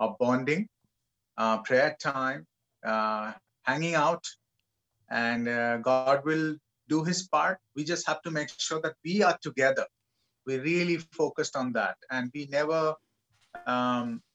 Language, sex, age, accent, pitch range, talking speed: English, male, 30-49, Indian, 120-160 Hz, 140 wpm